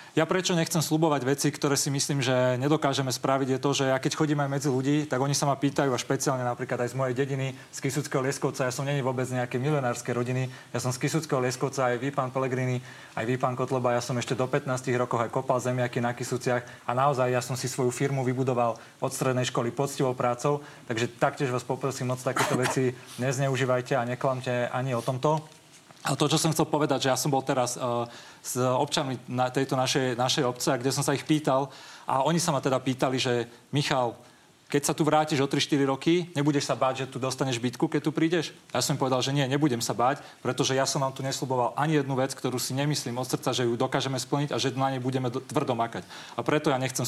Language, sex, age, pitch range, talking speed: Slovak, male, 30-49, 125-145 Hz, 230 wpm